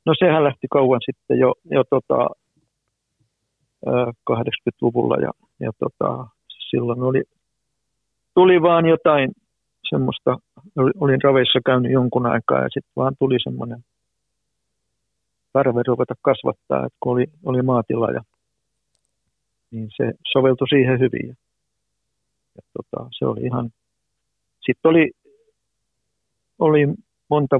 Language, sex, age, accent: Finnish, male, 50-69, native